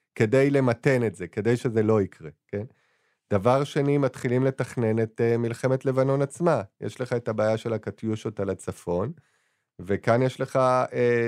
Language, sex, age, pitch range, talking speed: Hebrew, male, 30-49, 105-130 Hz, 155 wpm